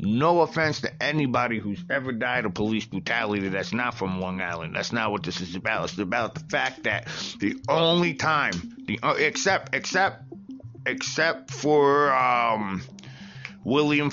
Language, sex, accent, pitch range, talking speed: English, male, American, 100-135 Hz, 155 wpm